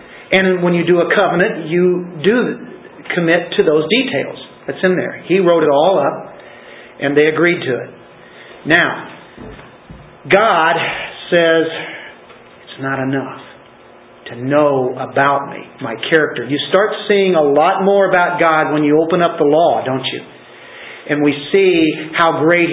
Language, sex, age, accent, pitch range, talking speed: English, male, 50-69, American, 150-185 Hz, 155 wpm